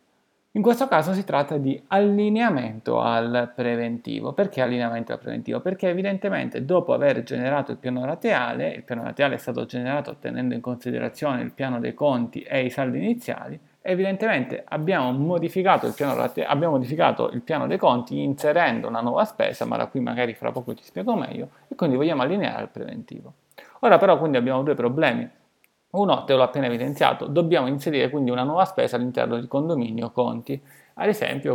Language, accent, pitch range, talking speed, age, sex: Italian, native, 120-155 Hz, 175 wpm, 30-49, male